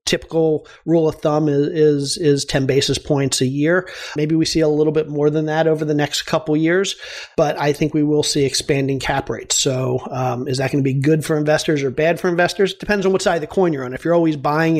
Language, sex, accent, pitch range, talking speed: English, male, American, 140-160 Hz, 260 wpm